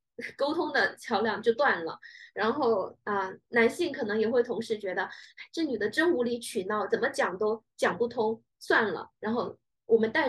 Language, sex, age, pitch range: Chinese, female, 20-39, 210-285 Hz